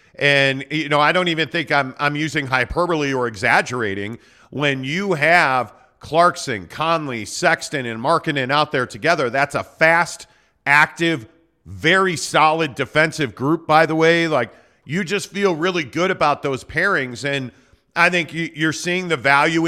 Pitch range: 140-165 Hz